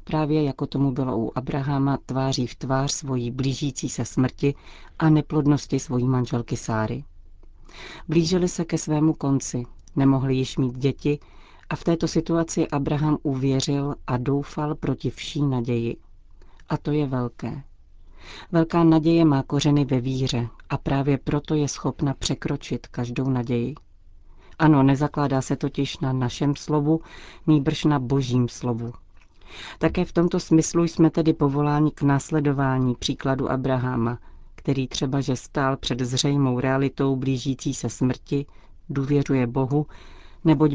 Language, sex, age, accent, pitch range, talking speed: Czech, female, 40-59, native, 125-150 Hz, 135 wpm